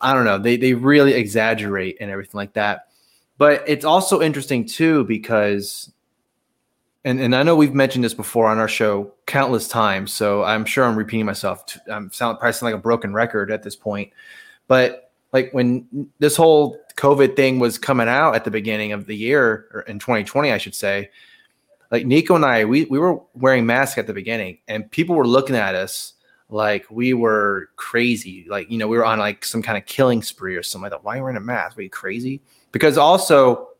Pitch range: 110-135 Hz